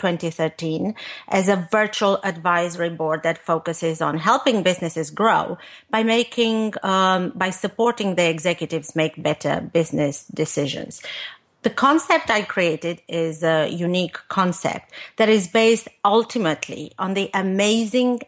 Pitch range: 170-215 Hz